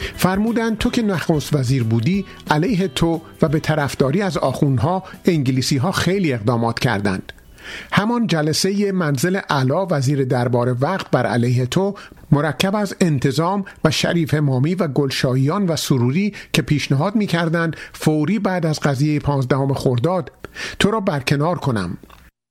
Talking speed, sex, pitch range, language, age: 135 wpm, male, 135-185 Hz, Persian, 50-69